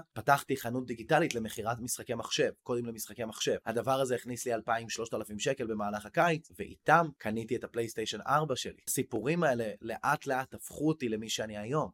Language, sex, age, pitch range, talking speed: Hebrew, male, 20-39, 115-155 Hz, 160 wpm